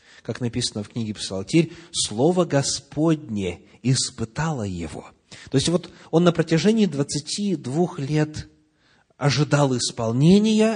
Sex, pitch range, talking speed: male, 105-170 Hz, 105 wpm